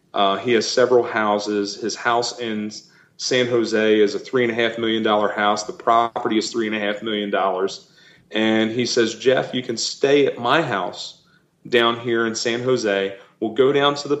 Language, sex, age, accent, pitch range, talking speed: English, male, 30-49, American, 110-140 Hz, 170 wpm